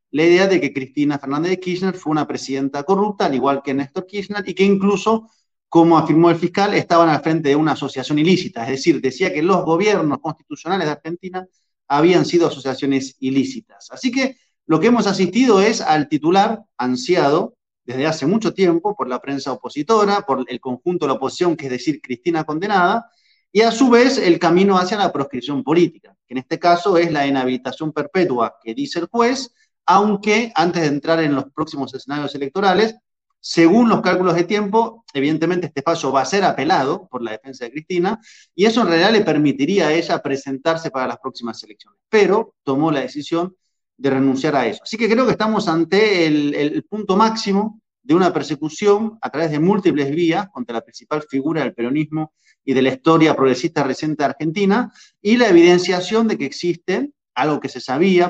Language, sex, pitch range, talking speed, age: Spanish, male, 140-200 Hz, 190 wpm, 30-49